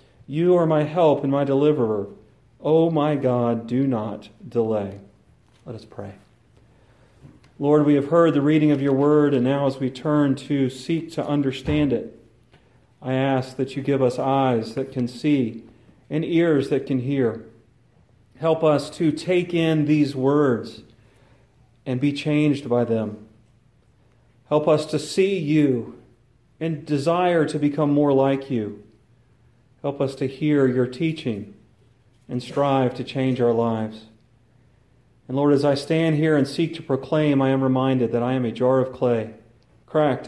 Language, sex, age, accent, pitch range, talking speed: English, male, 40-59, American, 120-145 Hz, 160 wpm